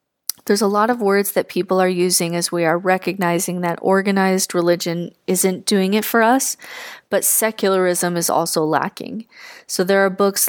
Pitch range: 175-205 Hz